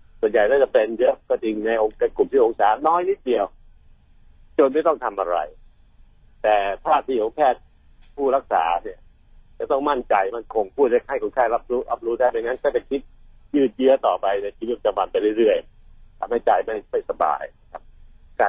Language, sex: Thai, male